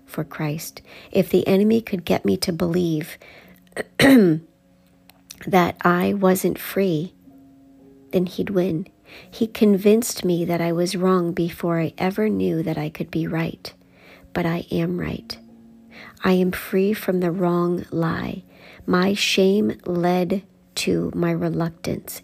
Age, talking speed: 50-69, 135 wpm